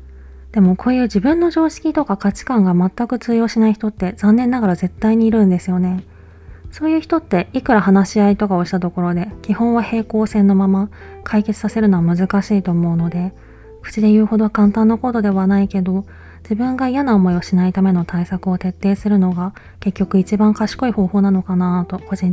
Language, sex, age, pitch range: Japanese, female, 20-39, 175-210 Hz